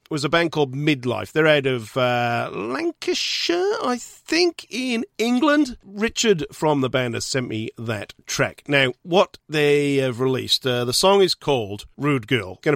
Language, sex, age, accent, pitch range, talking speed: English, male, 40-59, British, 125-170 Hz, 170 wpm